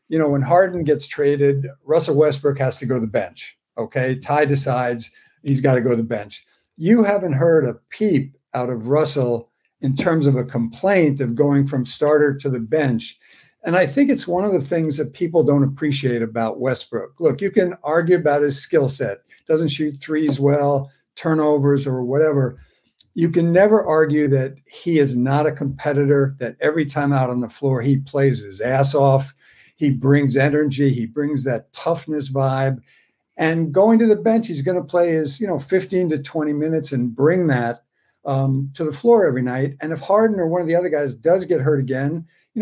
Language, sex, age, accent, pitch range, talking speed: English, male, 60-79, American, 135-165 Hz, 200 wpm